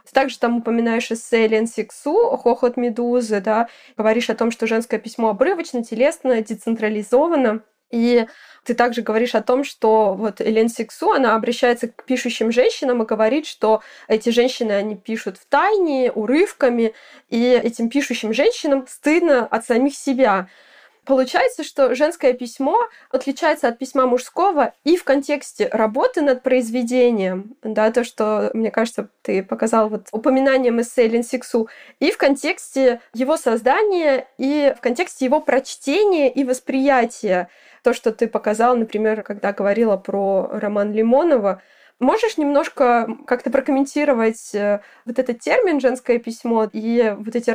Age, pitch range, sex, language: 20-39, 225-275 Hz, female, Russian